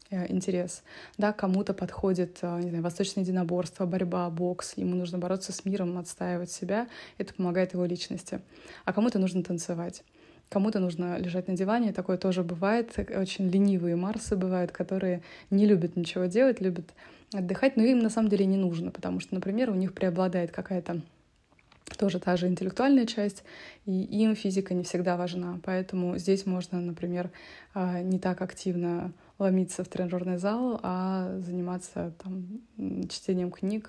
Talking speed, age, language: 150 wpm, 20-39, Russian